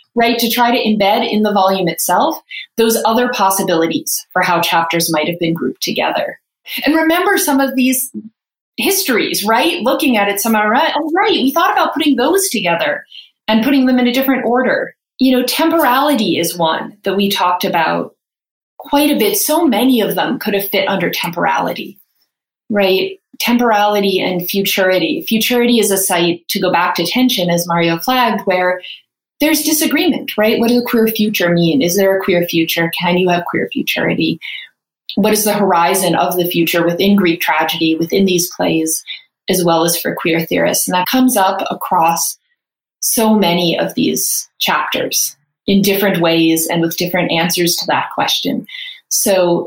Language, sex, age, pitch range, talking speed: English, female, 30-49, 180-250 Hz, 175 wpm